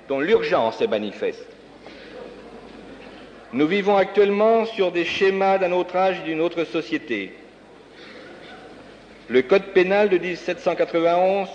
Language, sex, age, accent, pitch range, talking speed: French, male, 60-79, French, 155-210 Hz, 115 wpm